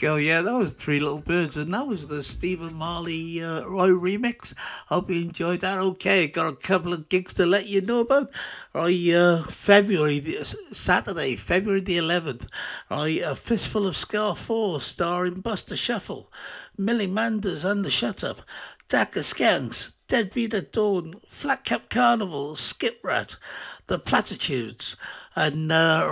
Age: 60-79